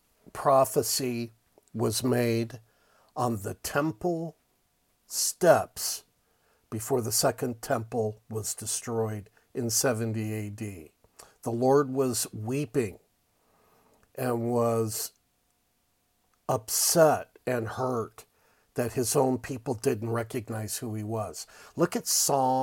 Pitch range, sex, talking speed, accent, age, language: 115-140 Hz, male, 100 wpm, American, 50-69, English